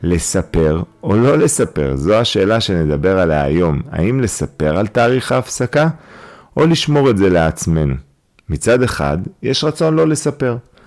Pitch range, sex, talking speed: 80-120 Hz, male, 140 wpm